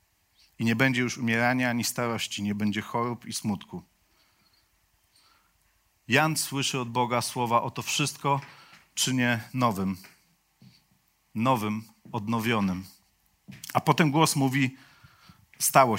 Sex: male